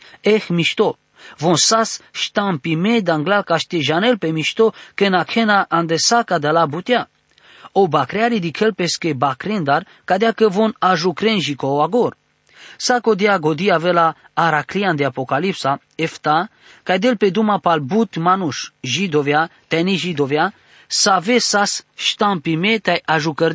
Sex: male